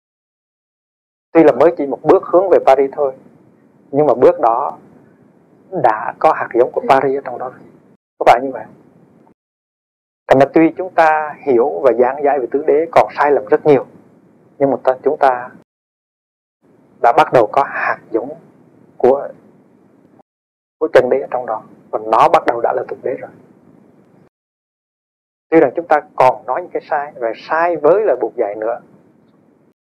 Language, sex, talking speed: Vietnamese, male, 175 wpm